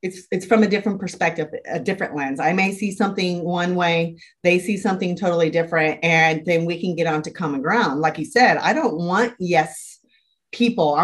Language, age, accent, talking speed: English, 30-49, American, 195 wpm